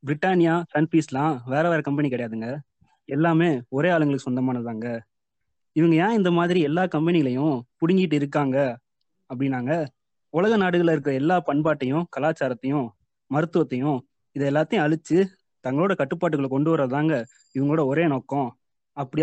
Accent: native